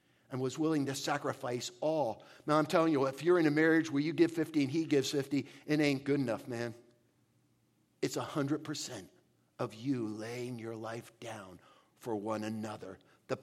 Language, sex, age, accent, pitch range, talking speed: English, male, 50-69, American, 140-220 Hz, 180 wpm